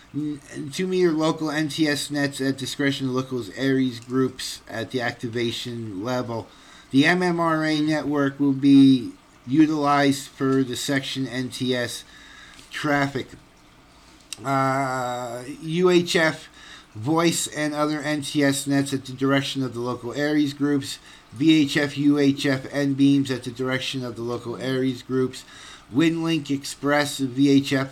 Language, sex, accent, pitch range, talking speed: English, male, American, 125-145 Hz, 120 wpm